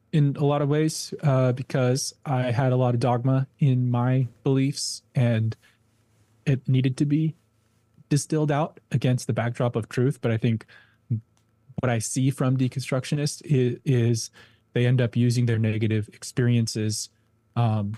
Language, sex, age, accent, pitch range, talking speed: English, male, 20-39, American, 110-130 Hz, 150 wpm